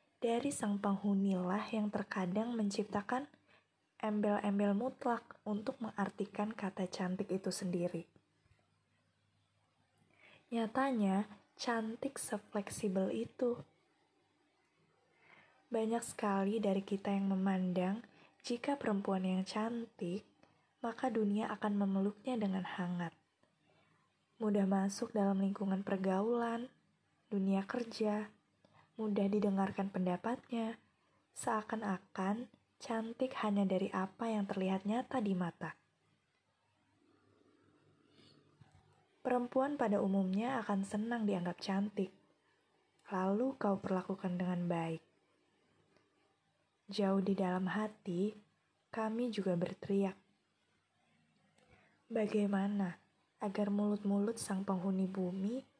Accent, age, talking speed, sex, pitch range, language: native, 20-39, 85 wpm, female, 195-225 Hz, Indonesian